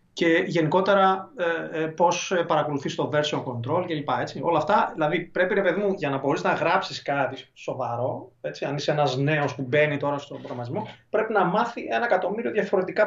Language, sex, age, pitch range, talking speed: Greek, male, 30-49, 145-185 Hz, 170 wpm